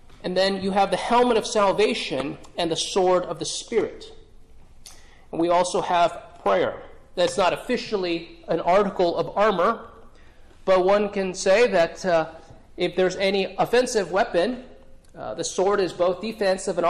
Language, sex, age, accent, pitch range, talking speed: English, male, 30-49, American, 165-200 Hz, 155 wpm